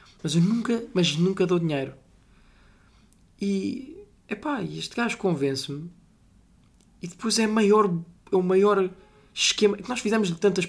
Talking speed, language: 130 wpm, Portuguese